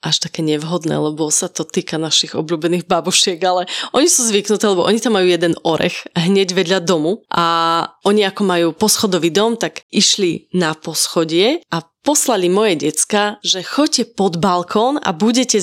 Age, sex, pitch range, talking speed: 30-49, female, 175-220 Hz, 165 wpm